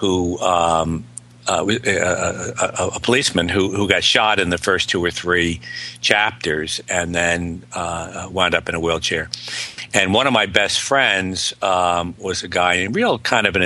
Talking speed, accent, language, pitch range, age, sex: 180 wpm, American, English, 90-110 Hz, 60-79, male